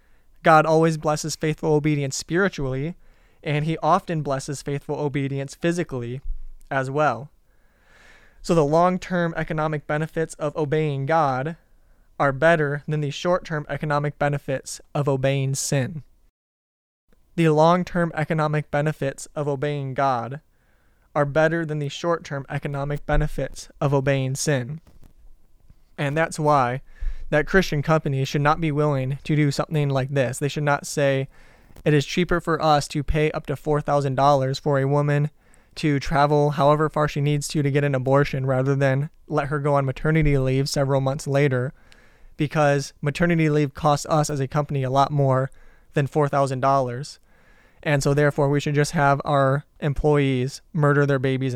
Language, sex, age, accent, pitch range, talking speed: English, male, 20-39, American, 135-155 Hz, 150 wpm